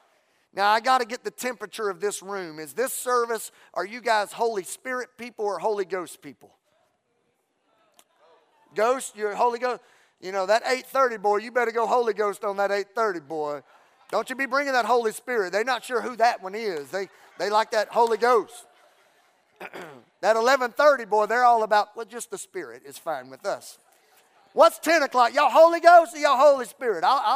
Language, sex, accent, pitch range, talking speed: English, male, American, 205-260 Hz, 190 wpm